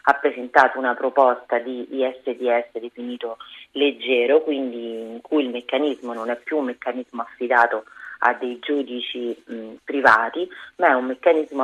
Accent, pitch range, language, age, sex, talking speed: native, 120-140 Hz, Italian, 30-49, female, 140 wpm